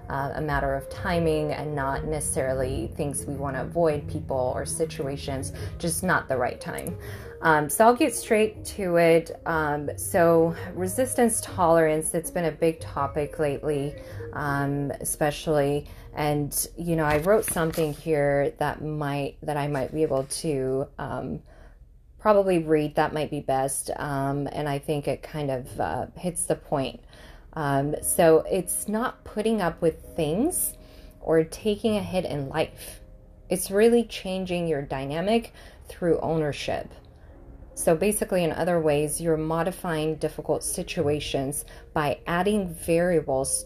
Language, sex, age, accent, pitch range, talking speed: English, female, 20-39, American, 140-170 Hz, 145 wpm